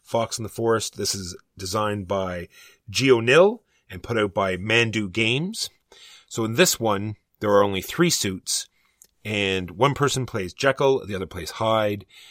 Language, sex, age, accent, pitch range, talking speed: English, male, 30-49, American, 95-115 Hz, 165 wpm